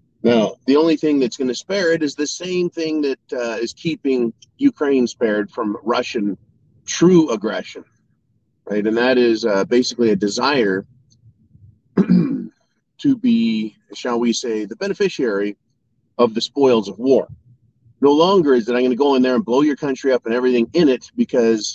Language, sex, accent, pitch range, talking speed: English, male, American, 110-145 Hz, 175 wpm